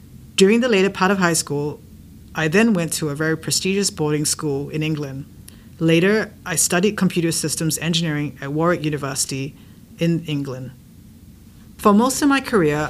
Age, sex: 40-59, female